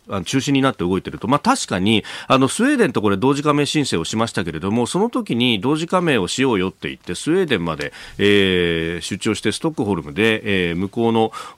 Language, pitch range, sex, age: Japanese, 95-135 Hz, male, 40-59